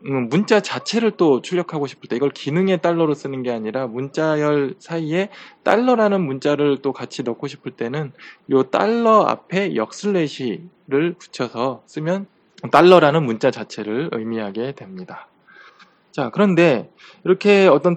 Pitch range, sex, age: 125-180 Hz, male, 20-39